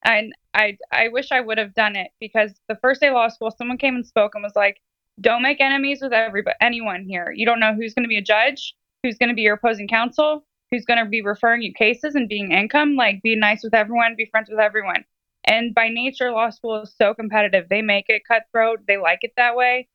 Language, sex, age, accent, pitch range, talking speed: English, female, 20-39, American, 215-260 Hz, 245 wpm